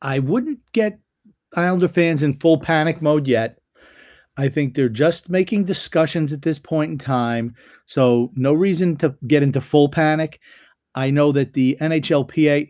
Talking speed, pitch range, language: 160 wpm, 125-155 Hz, English